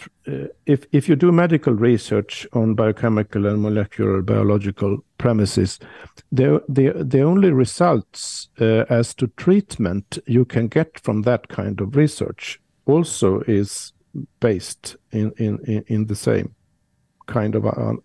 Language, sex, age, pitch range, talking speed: English, male, 50-69, 105-130 Hz, 135 wpm